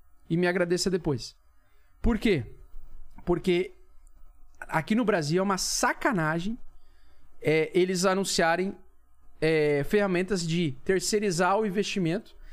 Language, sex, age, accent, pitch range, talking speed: Portuguese, male, 40-59, Brazilian, 130-200 Hz, 95 wpm